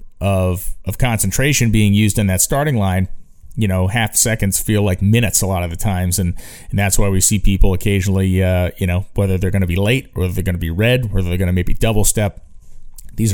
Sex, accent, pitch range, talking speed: male, American, 95-110 Hz, 220 wpm